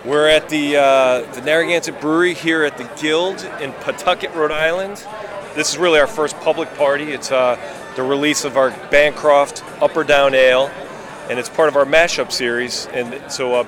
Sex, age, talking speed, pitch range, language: male, 40-59, 190 wpm, 125-150 Hz, English